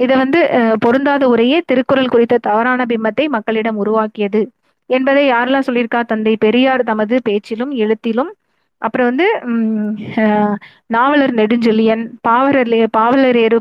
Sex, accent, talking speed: female, native, 105 wpm